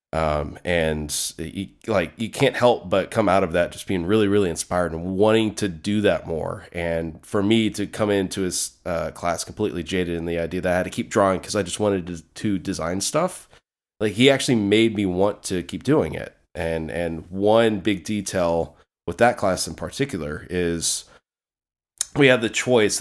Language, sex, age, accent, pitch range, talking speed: English, male, 30-49, American, 85-105 Hz, 200 wpm